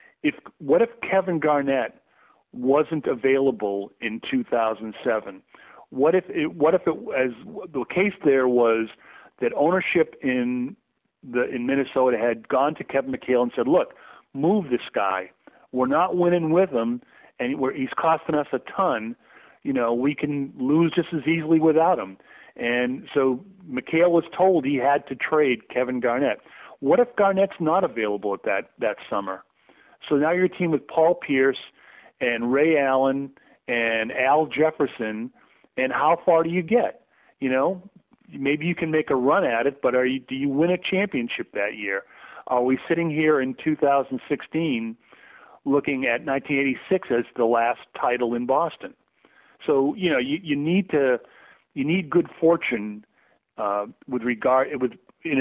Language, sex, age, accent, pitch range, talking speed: English, male, 40-59, American, 125-165 Hz, 165 wpm